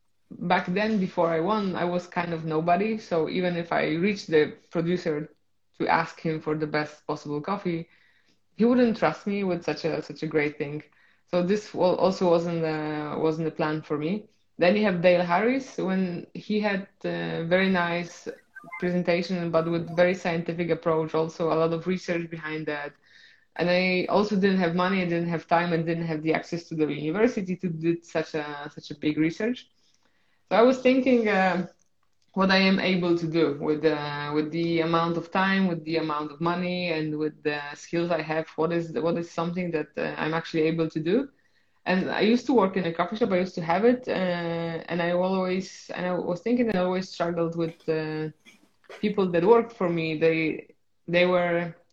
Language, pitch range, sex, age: English, 160-185 Hz, female, 20-39